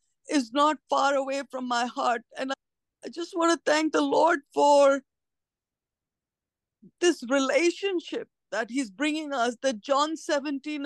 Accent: Indian